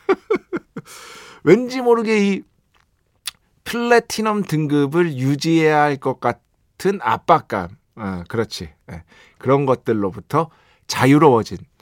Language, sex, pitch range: Korean, male, 105-155 Hz